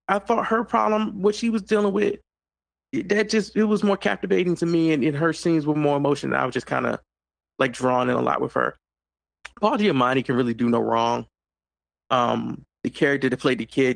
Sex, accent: male, American